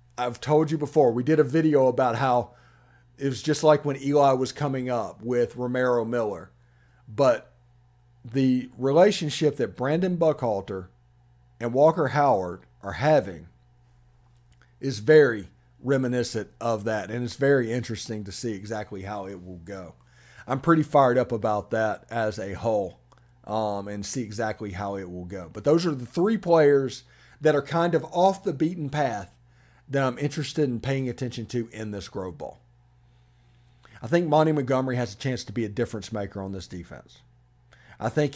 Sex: male